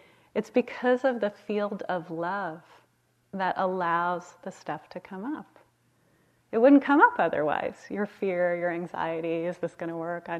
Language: English